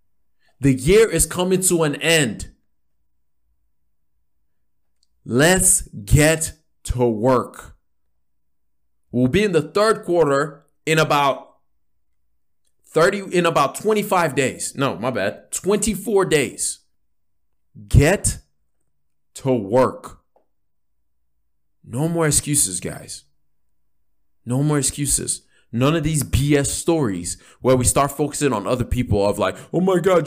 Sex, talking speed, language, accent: male, 110 wpm, English, American